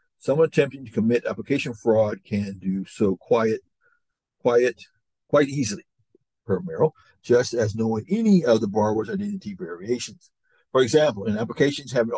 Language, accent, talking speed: English, American, 135 wpm